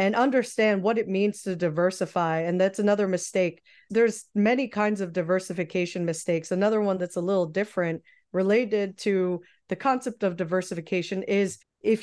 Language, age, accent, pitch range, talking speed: English, 30-49, American, 185-220 Hz, 155 wpm